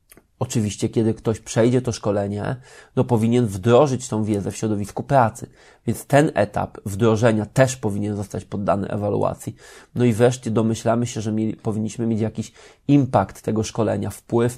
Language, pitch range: Polish, 110-125 Hz